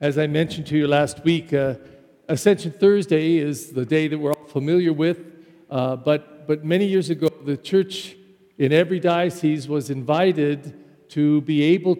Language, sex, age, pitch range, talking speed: English, male, 50-69, 150-190 Hz, 170 wpm